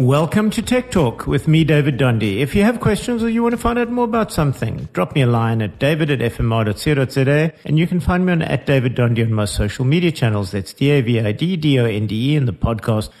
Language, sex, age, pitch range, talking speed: English, male, 50-69, 115-155 Hz, 220 wpm